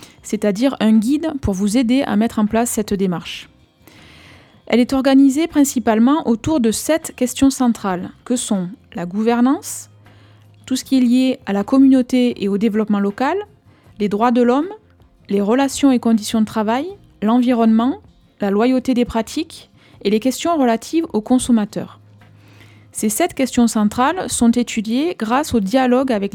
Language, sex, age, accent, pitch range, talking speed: French, female, 20-39, French, 210-260 Hz, 155 wpm